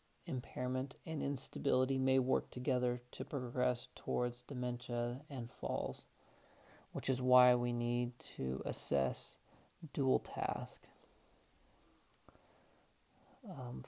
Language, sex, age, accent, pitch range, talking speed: English, male, 40-59, American, 125-150 Hz, 95 wpm